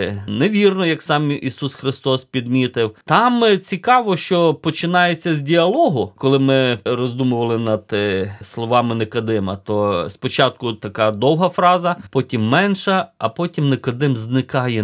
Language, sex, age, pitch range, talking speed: Ukrainian, male, 20-39, 115-190 Hz, 115 wpm